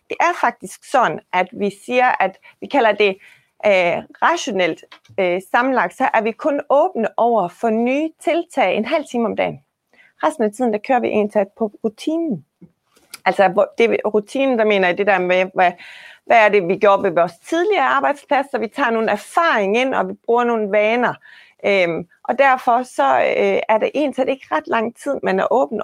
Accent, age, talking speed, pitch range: native, 30-49, 195 wpm, 200-275 Hz